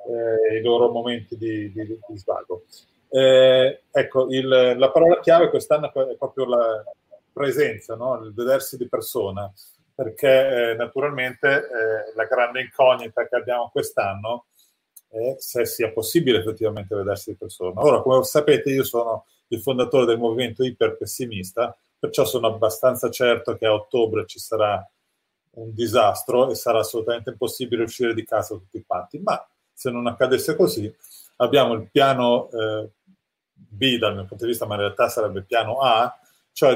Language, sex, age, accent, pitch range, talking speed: Italian, male, 30-49, native, 110-130 Hz, 155 wpm